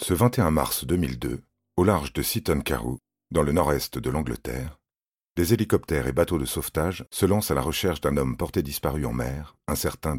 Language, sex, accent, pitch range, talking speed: French, male, French, 65-85 Hz, 195 wpm